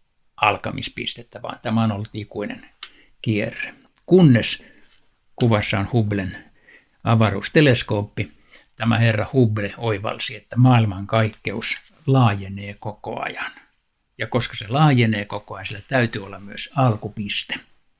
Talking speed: 105 wpm